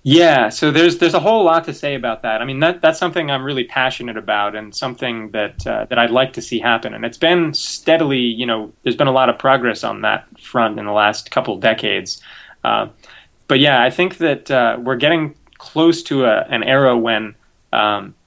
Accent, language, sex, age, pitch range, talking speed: American, English, male, 20-39, 110-135 Hz, 220 wpm